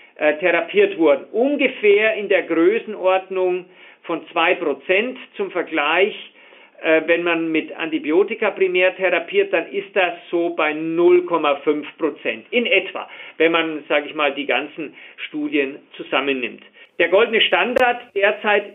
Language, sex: German, male